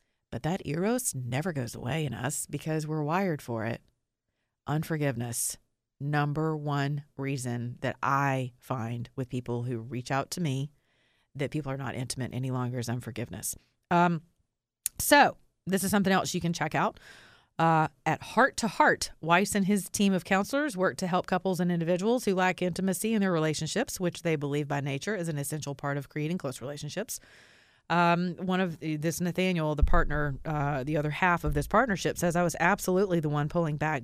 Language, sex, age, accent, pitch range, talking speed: English, female, 30-49, American, 140-185 Hz, 185 wpm